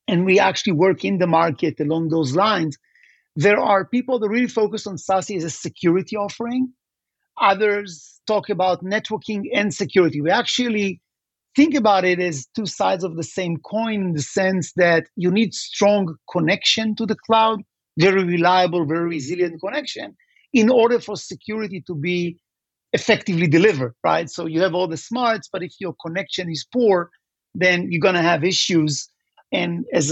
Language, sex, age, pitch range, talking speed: English, male, 50-69, 165-205 Hz, 170 wpm